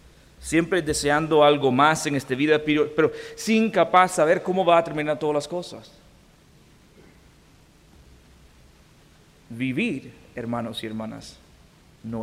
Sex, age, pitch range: male, 50-69, 130-170 Hz